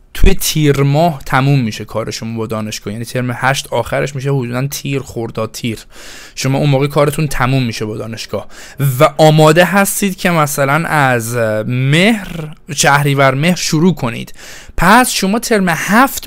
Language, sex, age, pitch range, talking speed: Persian, male, 20-39, 125-175 Hz, 150 wpm